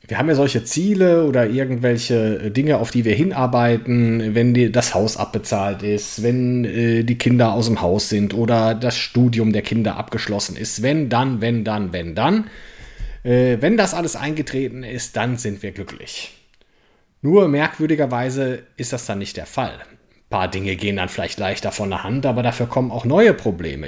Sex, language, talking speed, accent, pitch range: male, German, 175 wpm, German, 105-130 Hz